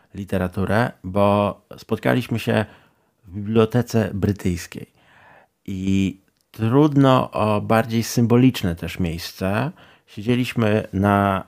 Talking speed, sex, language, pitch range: 85 wpm, male, Polish, 95-115 Hz